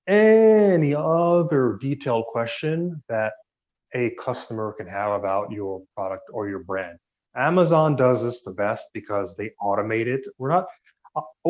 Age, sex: 30-49, male